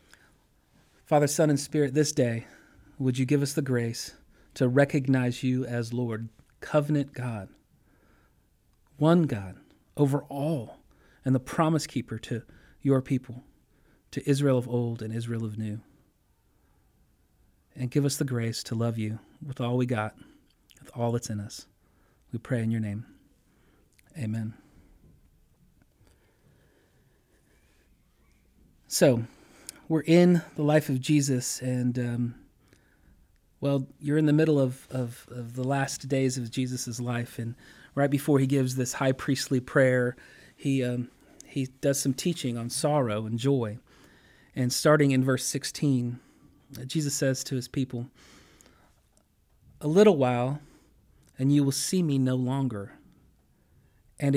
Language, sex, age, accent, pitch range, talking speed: English, male, 40-59, American, 120-140 Hz, 135 wpm